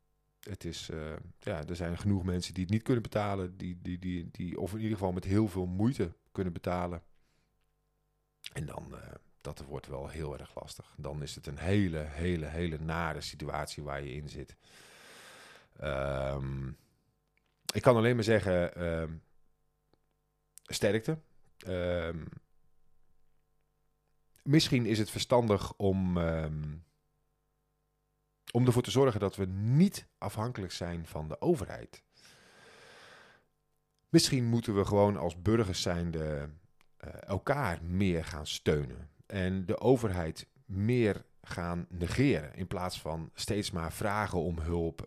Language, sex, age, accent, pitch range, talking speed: Dutch, male, 40-59, Dutch, 80-110 Hz, 120 wpm